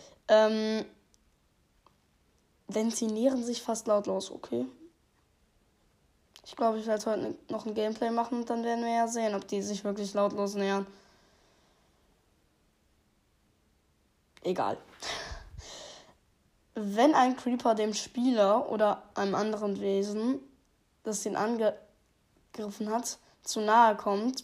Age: 10-29